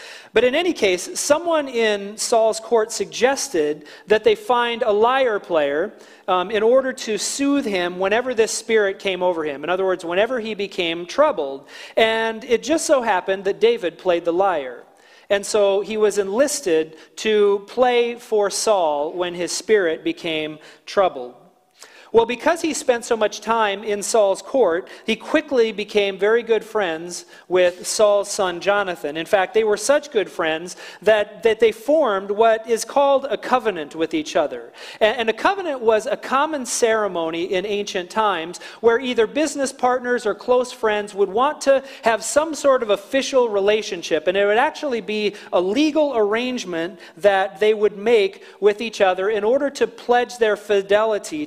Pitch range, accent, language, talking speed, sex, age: 195-250 Hz, American, English, 170 wpm, male, 40-59